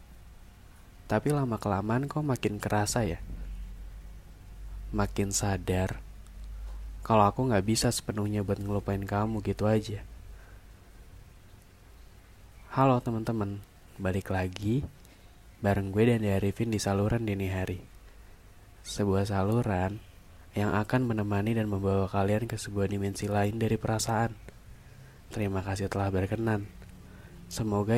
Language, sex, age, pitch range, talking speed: Indonesian, male, 20-39, 95-110 Hz, 105 wpm